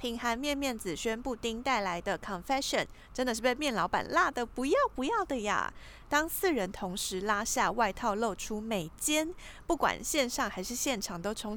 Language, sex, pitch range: Chinese, female, 205-280 Hz